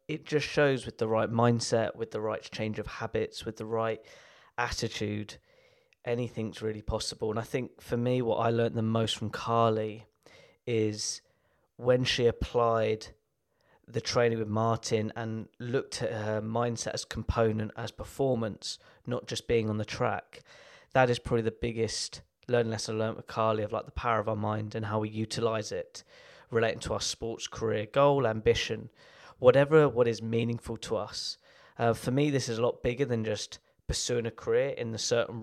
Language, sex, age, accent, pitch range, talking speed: English, male, 20-39, British, 110-130 Hz, 180 wpm